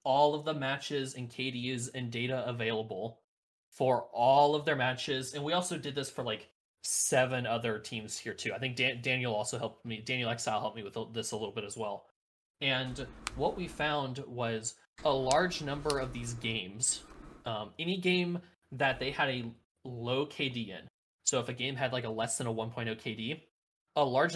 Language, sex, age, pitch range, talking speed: English, male, 20-39, 120-150 Hz, 190 wpm